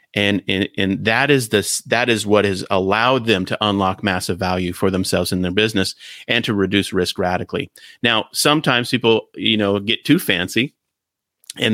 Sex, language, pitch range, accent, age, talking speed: male, English, 95-115 Hz, American, 30-49, 180 wpm